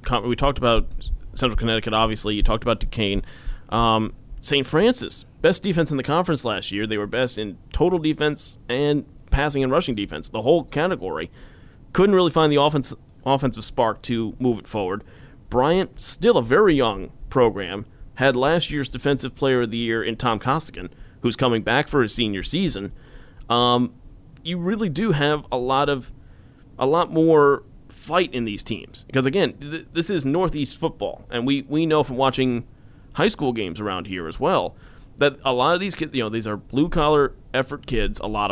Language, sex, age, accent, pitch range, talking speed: English, male, 30-49, American, 115-145 Hz, 185 wpm